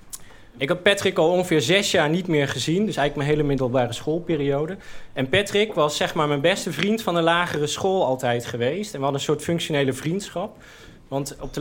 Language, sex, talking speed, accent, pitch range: Dutch, male, 205 wpm, Dutch, 130-170 Hz